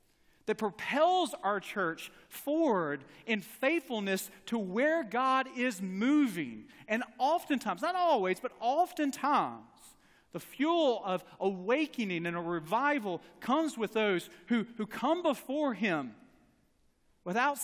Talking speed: 115 wpm